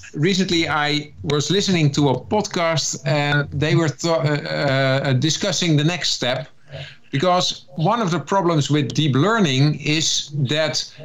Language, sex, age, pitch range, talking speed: English, male, 50-69, 135-170 Hz, 140 wpm